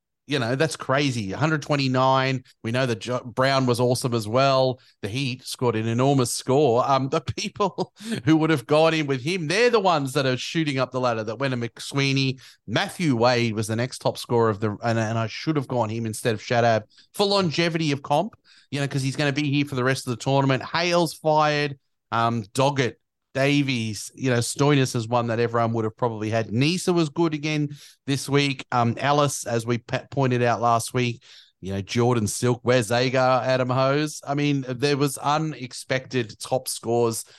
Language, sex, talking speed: English, male, 200 wpm